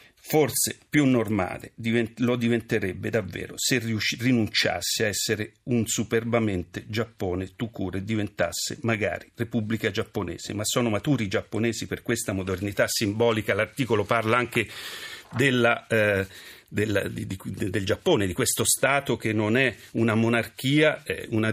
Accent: native